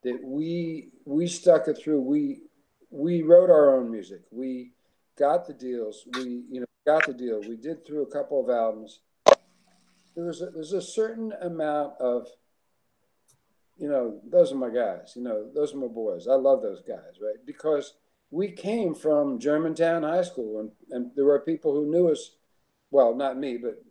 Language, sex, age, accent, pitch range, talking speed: English, male, 50-69, American, 130-185 Hz, 180 wpm